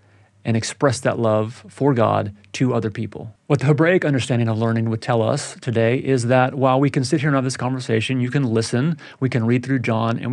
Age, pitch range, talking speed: 30-49, 115-140 Hz, 225 wpm